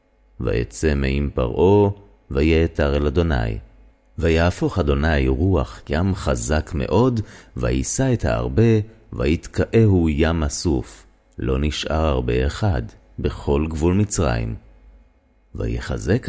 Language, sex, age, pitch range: Hebrew, male, 30-49, 65-100 Hz